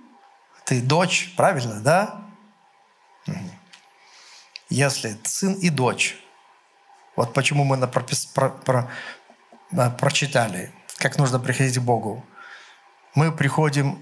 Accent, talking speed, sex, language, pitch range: native, 80 wpm, male, Russian, 140-175 Hz